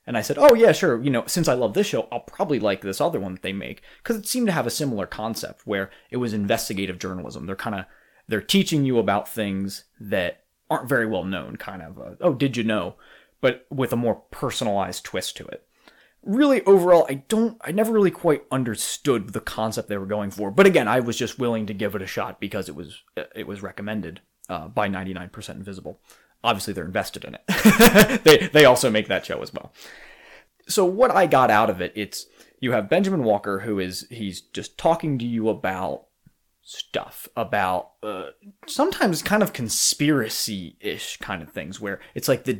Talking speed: 210 wpm